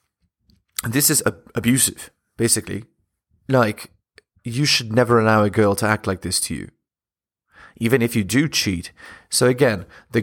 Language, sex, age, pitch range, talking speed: English, male, 30-49, 105-120 Hz, 145 wpm